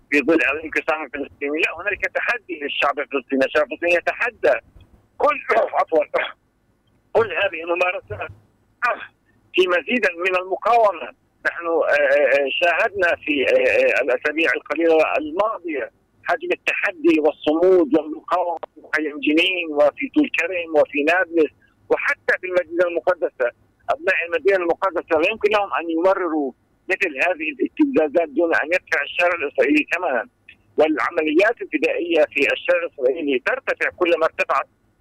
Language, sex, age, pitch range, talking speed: Arabic, male, 50-69, 155-225 Hz, 110 wpm